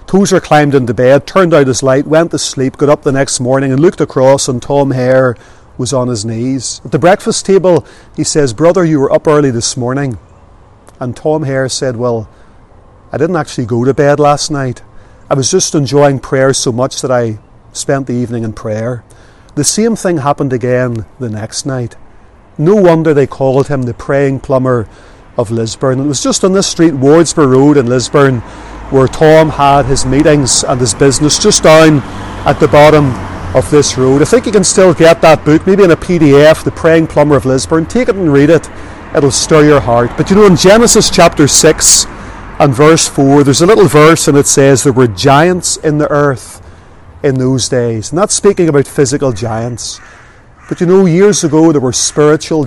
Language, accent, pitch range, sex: English, Irish, 120-155 Hz, male